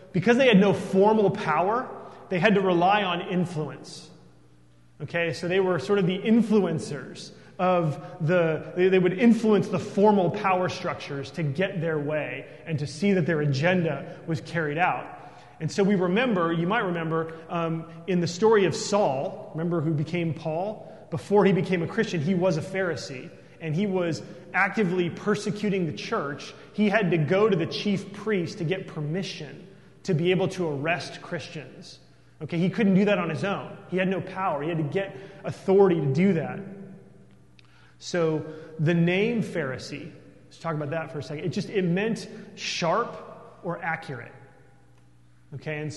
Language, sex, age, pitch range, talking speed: English, male, 30-49, 155-195 Hz, 170 wpm